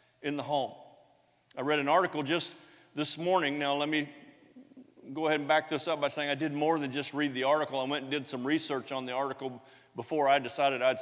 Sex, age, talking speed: male, 40-59, 230 wpm